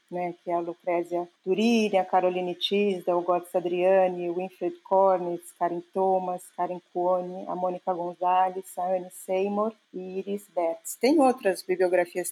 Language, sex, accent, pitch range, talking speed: Portuguese, female, Brazilian, 180-215 Hz, 150 wpm